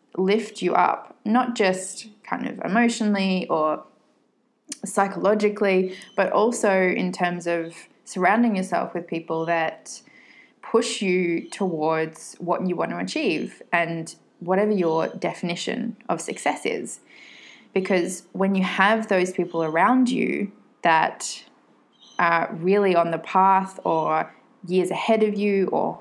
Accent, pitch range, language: Australian, 170-210 Hz, English